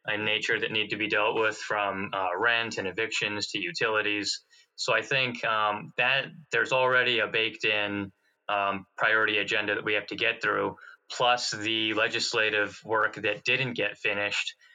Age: 20-39